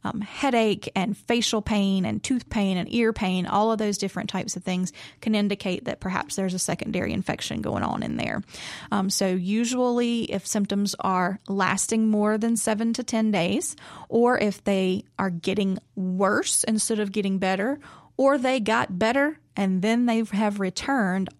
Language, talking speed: English, 175 wpm